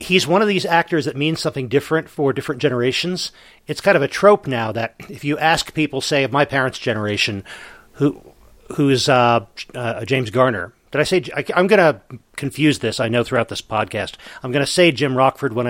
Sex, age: male, 40-59